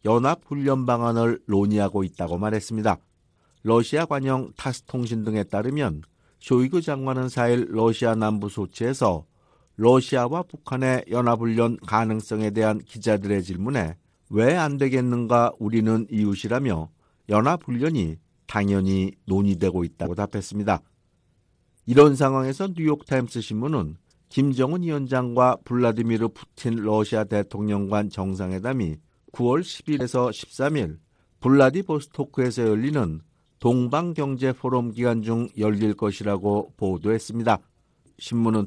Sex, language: male, Korean